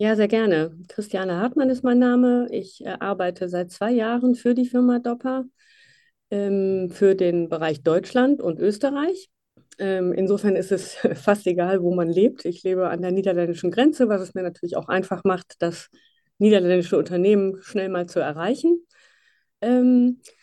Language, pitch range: German, 175-220 Hz